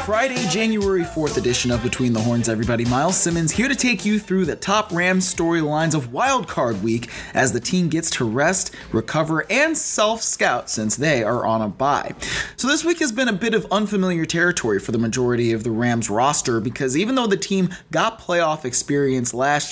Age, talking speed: 20-39, 195 wpm